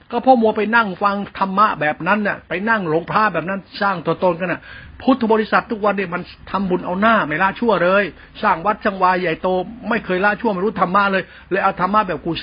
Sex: male